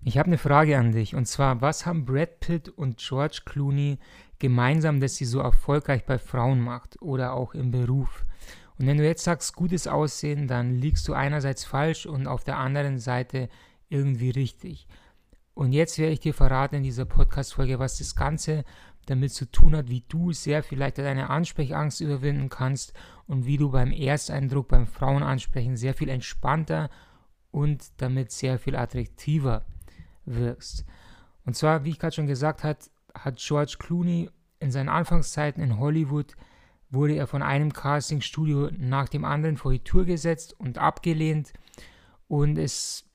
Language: German